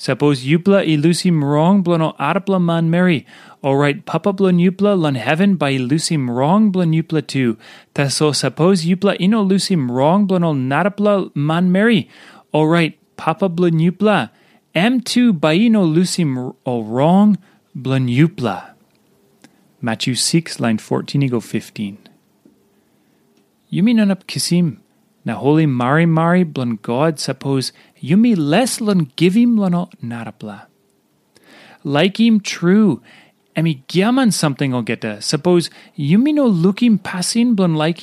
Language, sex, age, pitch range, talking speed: English, male, 30-49, 135-195 Hz, 145 wpm